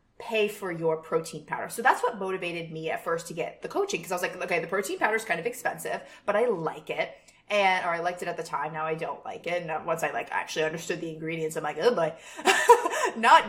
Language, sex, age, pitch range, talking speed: English, female, 20-39, 170-230 Hz, 260 wpm